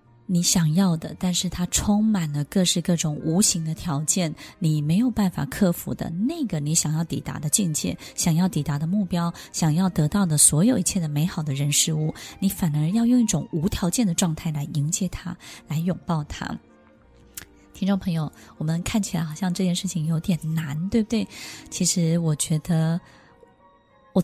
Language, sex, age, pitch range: Chinese, female, 20-39, 160-200 Hz